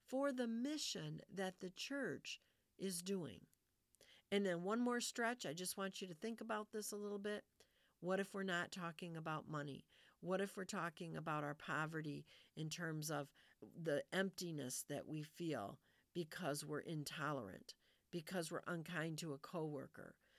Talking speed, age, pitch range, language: 165 wpm, 50-69, 150-195 Hz, English